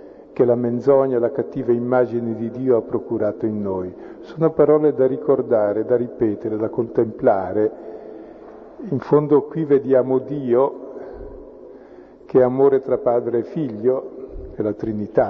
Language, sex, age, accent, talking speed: Italian, male, 50-69, native, 135 wpm